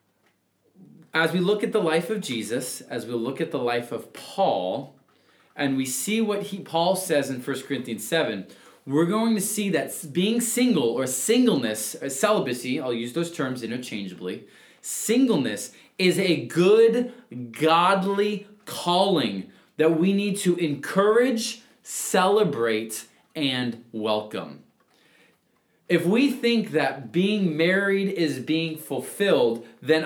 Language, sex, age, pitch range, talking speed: English, male, 20-39, 140-220 Hz, 135 wpm